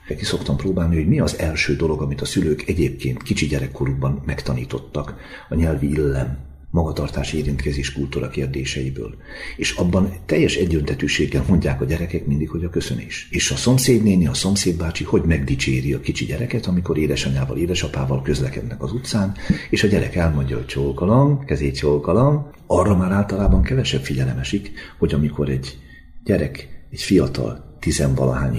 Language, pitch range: Hungarian, 70-85 Hz